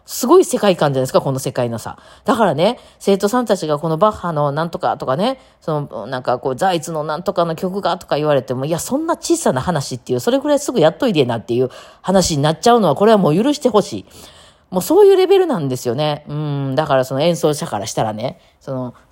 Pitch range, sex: 130-205 Hz, female